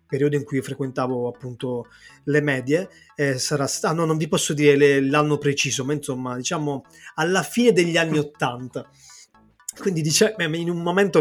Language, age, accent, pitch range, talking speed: Italian, 20-39, native, 135-155 Hz, 170 wpm